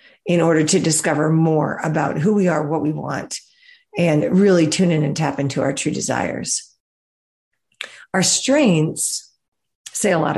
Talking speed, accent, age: 155 wpm, American, 50-69